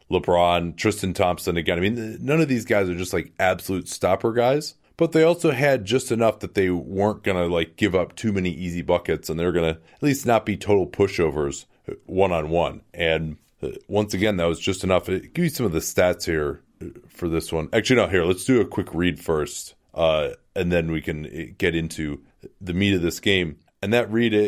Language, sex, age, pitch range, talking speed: English, male, 30-49, 80-110 Hz, 205 wpm